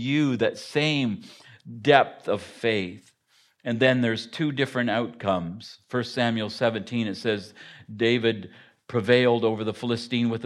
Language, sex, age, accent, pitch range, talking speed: English, male, 50-69, American, 110-135 Hz, 130 wpm